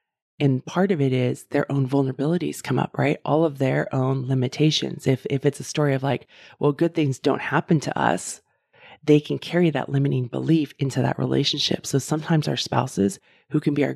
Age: 30-49